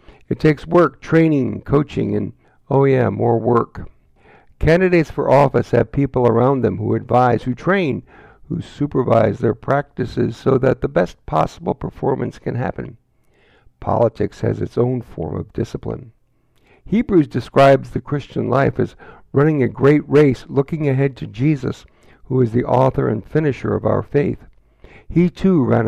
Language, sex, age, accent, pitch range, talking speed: English, male, 60-79, American, 120-145 Hz, 155 wpm